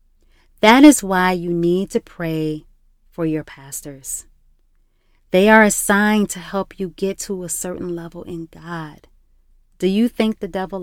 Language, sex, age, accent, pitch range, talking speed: English, female, 30-49, American, 155-195 Hz, 155 wpm